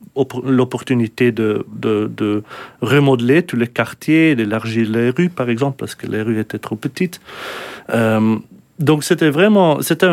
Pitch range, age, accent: 110-135 Hz, 40-59, French